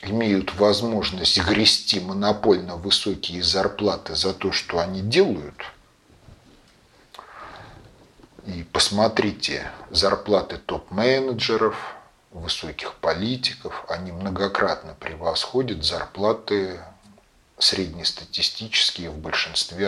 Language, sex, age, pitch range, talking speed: Russian, male, 40-59, 95-115 Hz, 70 wpm